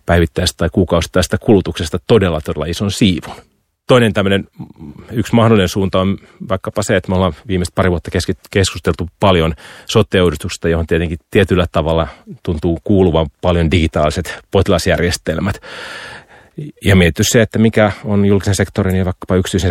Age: 30-49